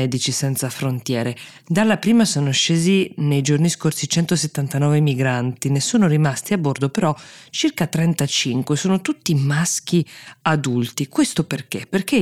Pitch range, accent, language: 135-170 Hz, native, Italian